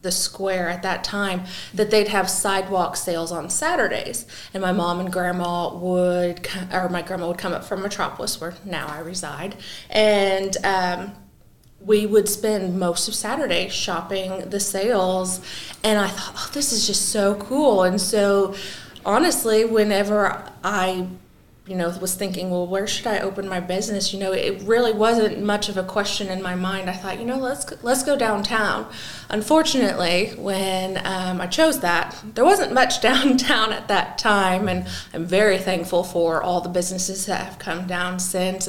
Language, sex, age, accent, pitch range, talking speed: English, female, 20-39, American, 180-205 Hz, 175 wpm